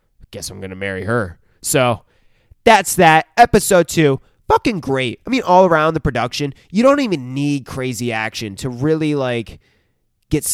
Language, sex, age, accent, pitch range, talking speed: English, male, 20-39, American, 115-145 Hz, 160 wpm